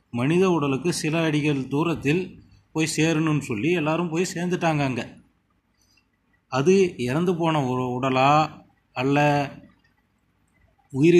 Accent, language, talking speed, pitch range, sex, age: native, Tamil, 95 wpm, 130-160 Hz, male, 30-49